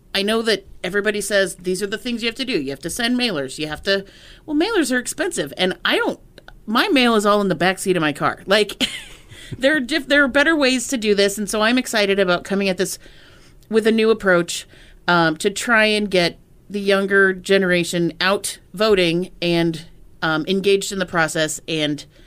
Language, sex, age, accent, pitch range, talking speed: English, female, 30-49, American, 170-210 Hz, 215 wpm